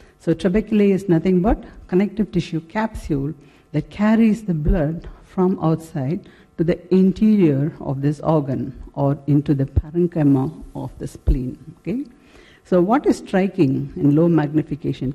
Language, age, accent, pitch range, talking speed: English, 60-79, Indian, 150-190 Hz, 140 wpm